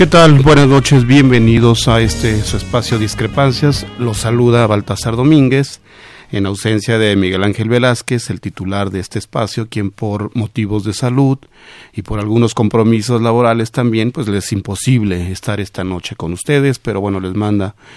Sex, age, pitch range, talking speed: male, 40-59, 100-130 Hz, 165 wpm